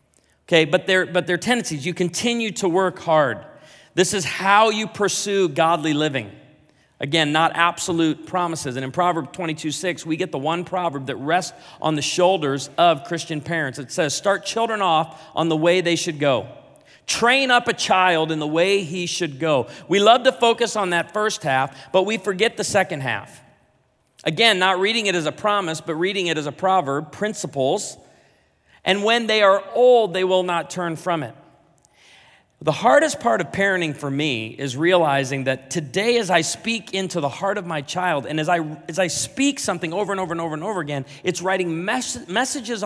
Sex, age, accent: male, 40-59, American